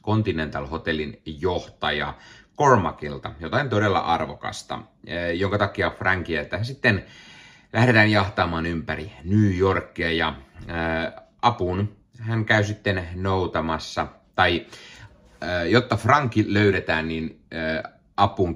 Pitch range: 80-105 Hz